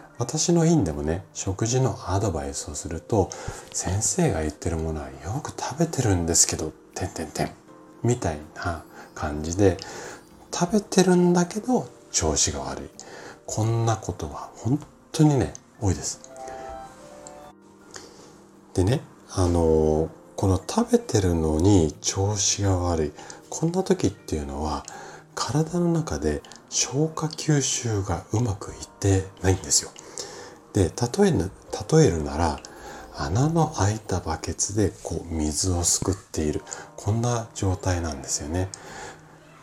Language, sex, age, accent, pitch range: Japanese, male, 40-59, native, 80-130 Hz